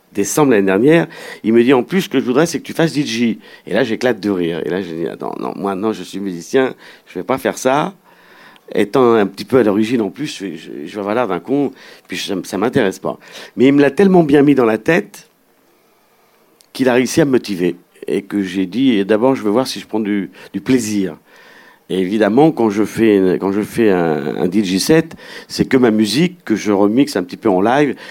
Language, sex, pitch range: French, male, 95-130 Hz